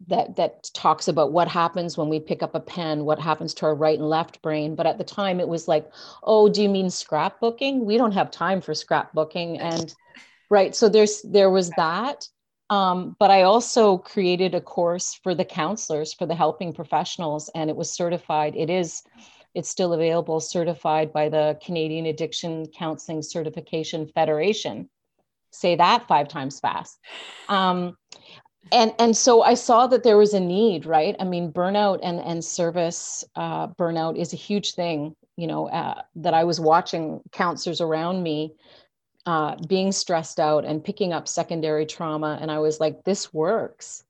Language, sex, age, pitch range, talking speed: English, female, 40-59, 155-190 Hz, 175 wpm